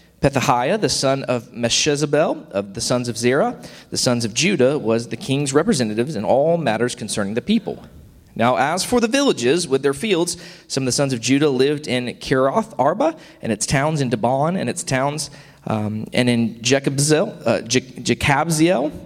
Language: English